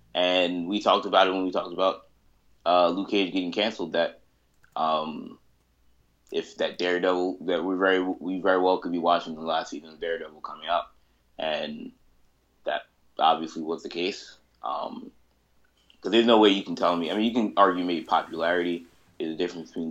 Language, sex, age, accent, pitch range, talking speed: English, male, 20-39, American, 75-90 Hz, 185 wpm